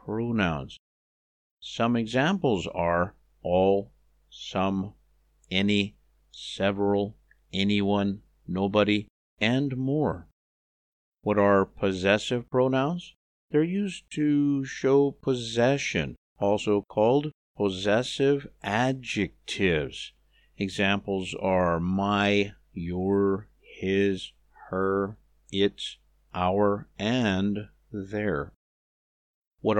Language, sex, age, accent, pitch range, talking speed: English, male, 50-69, American, 95-125 Hz, 75 wpm